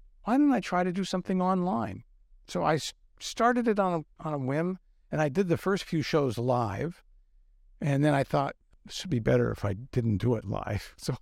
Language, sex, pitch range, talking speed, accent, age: English, male, 115-150 Hz, 210 wpm, American, 60-79